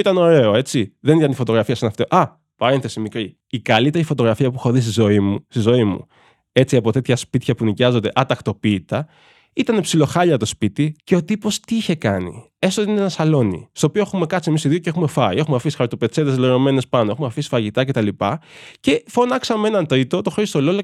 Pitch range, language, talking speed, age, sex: 120-195 Hz, Greek, 210 wpm, 20-39, male